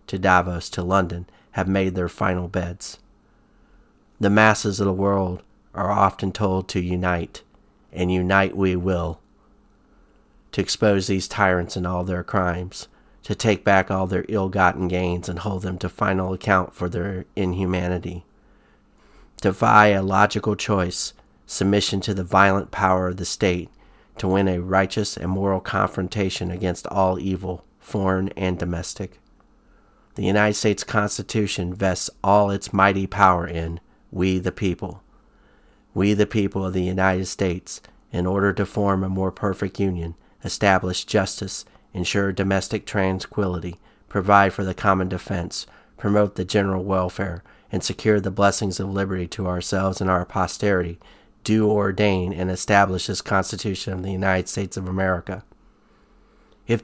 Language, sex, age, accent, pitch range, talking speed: English, male, 40-59, American, 90-100 Hz, 150 wpm